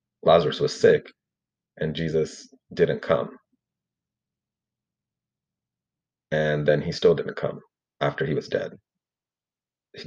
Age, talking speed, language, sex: 30-49, 105 wpm, English, male